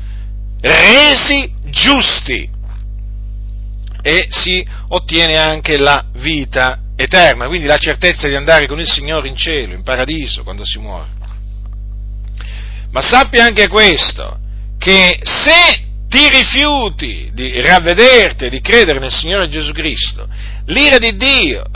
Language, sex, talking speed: Italian, male, 120 wpm